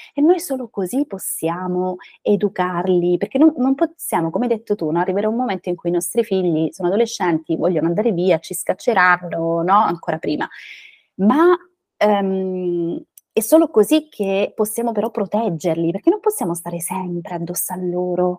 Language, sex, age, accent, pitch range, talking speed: Italian, female, 20-39, native, 175-240 Hz, 165 wpm